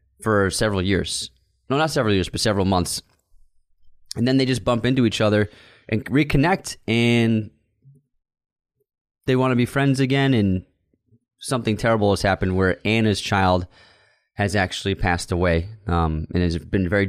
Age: 20-39